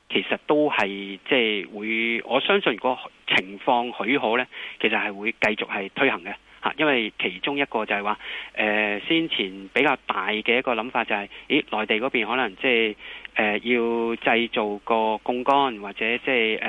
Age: 20-39